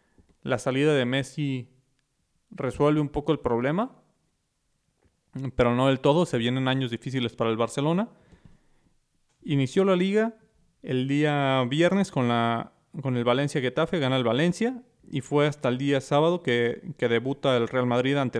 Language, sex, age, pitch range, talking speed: Spanish, male, 30-49, 125-160 Hz, 155 wpm